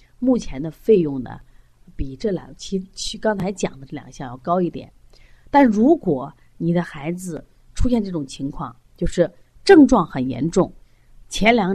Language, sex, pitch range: Chinese, female, 140-210 Hz